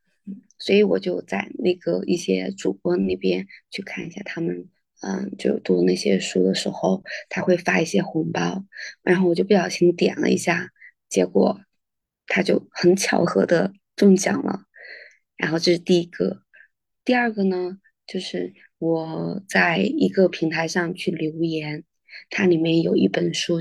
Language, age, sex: Chinese, 20-39, female